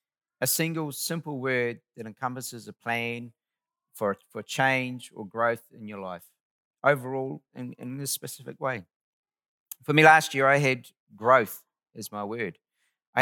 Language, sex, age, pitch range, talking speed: English, male, 50-69, 100-130 Hz, 145 wpm